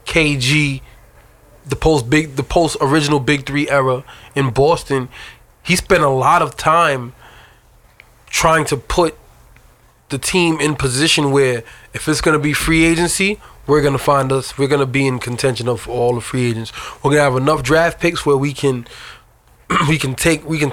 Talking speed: 185 wpm